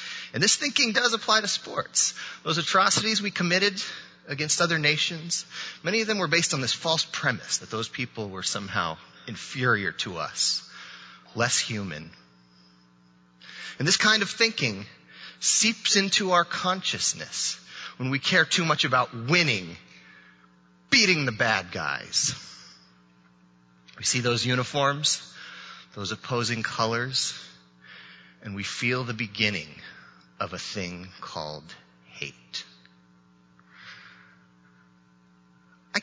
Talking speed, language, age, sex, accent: 120 wpm, English, 30-49, male, American